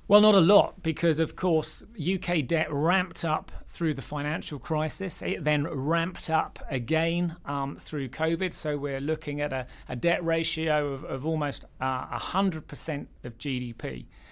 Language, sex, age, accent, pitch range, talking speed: English, male, 40-59, British, 135-175 Hz, 165 wpm